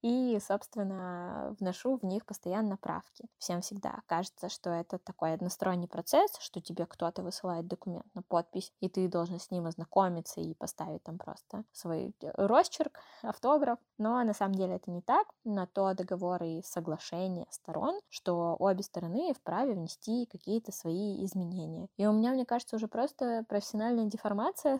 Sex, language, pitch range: female, Russian, 180-225 Hz